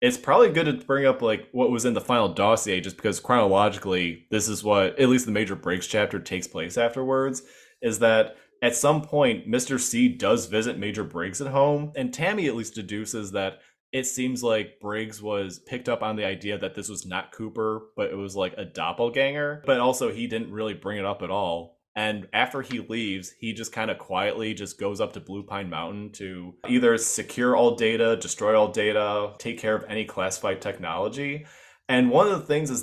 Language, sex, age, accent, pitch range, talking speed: English, male, 20-39, American, 95-125 Hz, 210 wpm